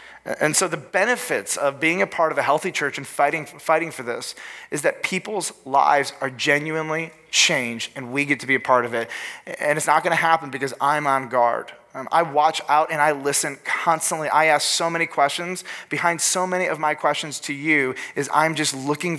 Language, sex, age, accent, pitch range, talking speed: English, male, 30-49, American, 135-160 Hz, 210 wpm